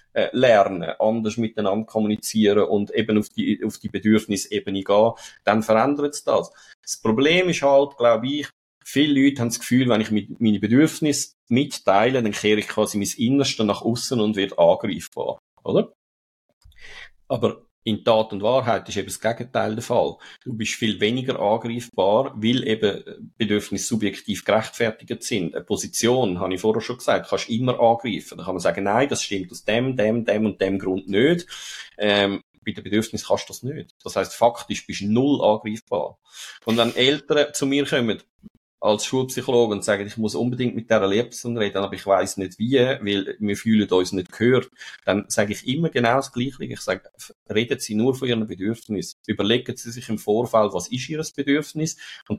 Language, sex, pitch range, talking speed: German, male, 105-125 Hz, 180 wpm